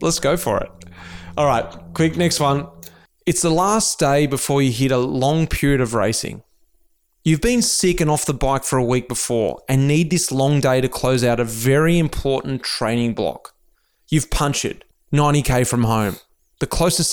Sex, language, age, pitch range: male, English, 20-39, 125-165 Hz